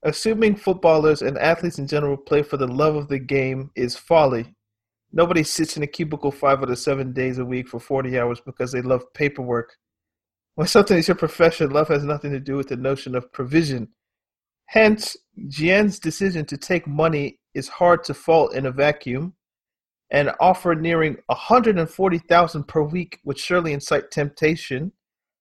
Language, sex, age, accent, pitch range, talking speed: English, male, 40-59, American, 130-165 Hz, 170 wpm